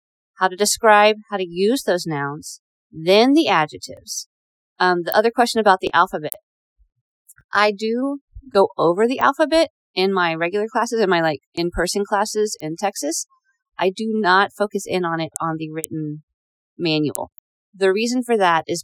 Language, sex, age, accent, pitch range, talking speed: English, female, 40-59, American, 180-225 Hz, 160 wpm